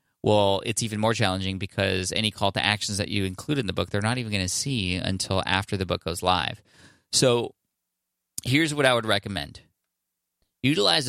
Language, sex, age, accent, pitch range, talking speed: English, male, 20-39, American, 95-115 Hz, 190 wpm